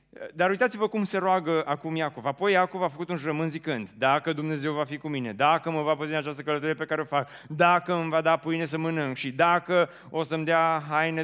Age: 30-49